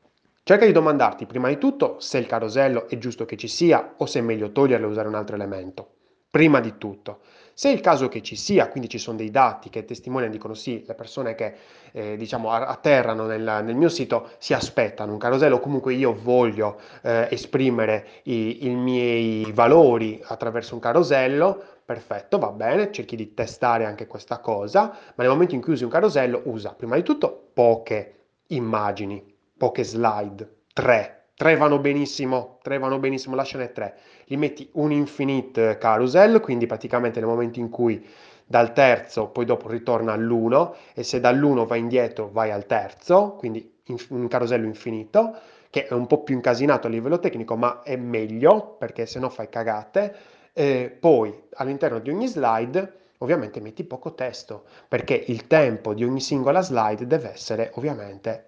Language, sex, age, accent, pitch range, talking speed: Italian, male, 20-39, native, 115-135 Hz, 175 wpm